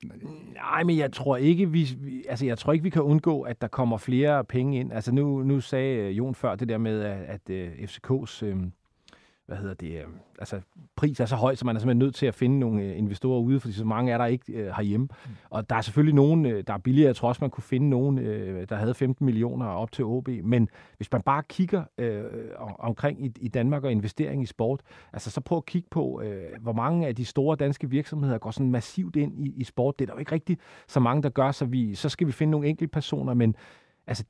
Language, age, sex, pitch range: Danish, 40-59, male, 115-145 Hz